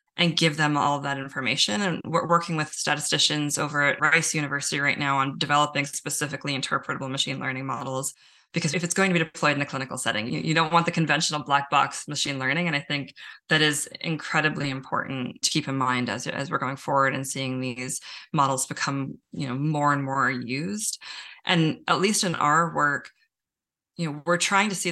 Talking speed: 200 wpm